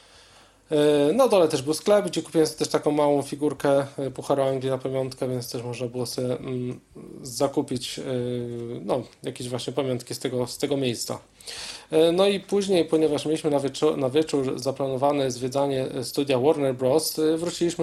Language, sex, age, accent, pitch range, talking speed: Polish, male, 20-39, native, 130-150 Hz, 160 wpm